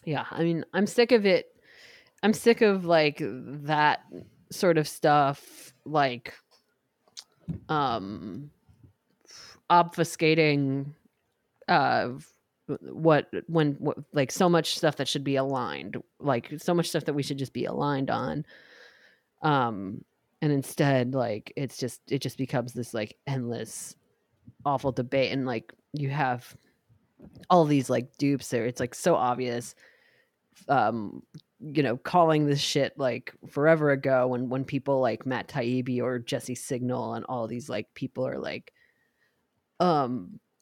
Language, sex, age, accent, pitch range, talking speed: English, female, 20-39, American, 130-170 Hz, 140 wpm